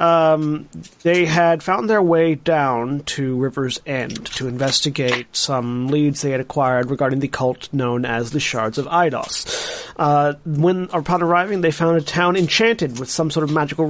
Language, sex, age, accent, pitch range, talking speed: English, male, 30-49, American, 130-170 Hz, 170 wpm